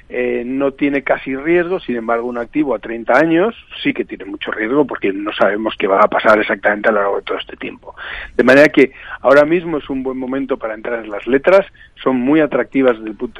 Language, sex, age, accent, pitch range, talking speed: Spanish, male, 40-59, Spanish, 120-155 Hz, 235 wpm